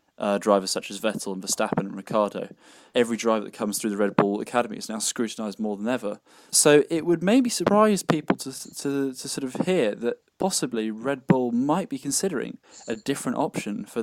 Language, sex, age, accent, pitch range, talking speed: English, male, 10-29, British, 110-145 Hz, 200 wpm